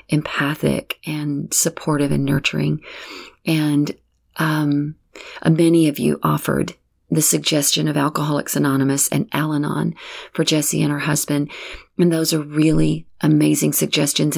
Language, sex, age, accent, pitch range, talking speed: English, female, 40-59, American, 140-165 Hz, 125 wpm